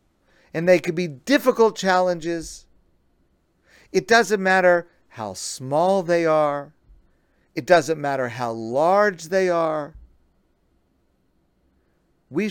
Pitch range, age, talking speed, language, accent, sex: 125-195 Hz, 50-69, 100 wpm, English, American, male